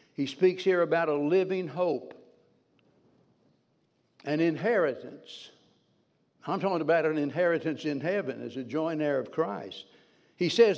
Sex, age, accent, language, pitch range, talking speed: male, 60-79, American, English, 160-195 Hz, 135 wpm